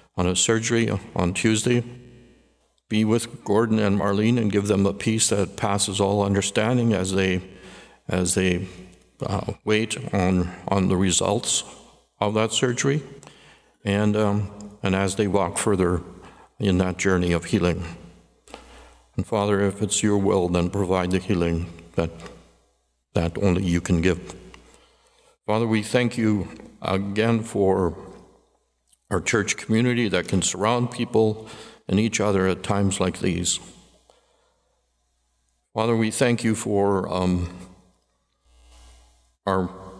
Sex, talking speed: male, 130 wpm